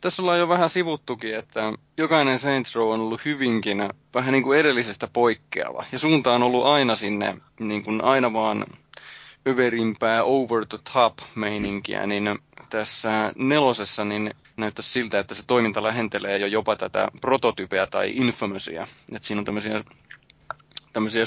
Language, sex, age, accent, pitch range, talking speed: Finnish, male, 20-39, native, 105-140 Hz, 145 wpm